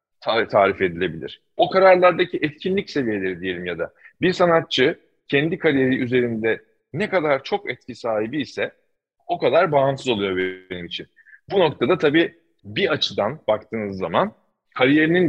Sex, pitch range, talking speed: male, 120-155 Hz, 135 wpm